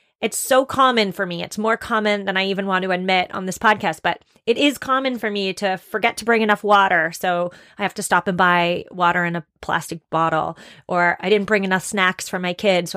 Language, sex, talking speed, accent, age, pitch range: English, female, 235 wpm, American, 30-49, 185-235 Hz